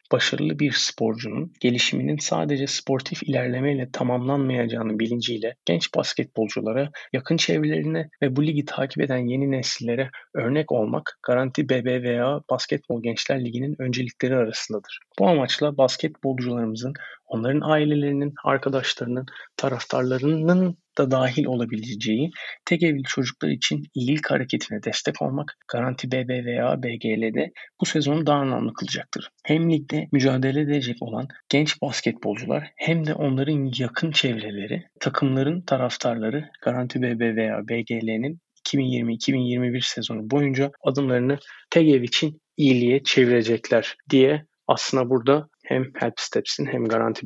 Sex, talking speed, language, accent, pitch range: male, 115 wpm, Turkish, native, 120-150 Hz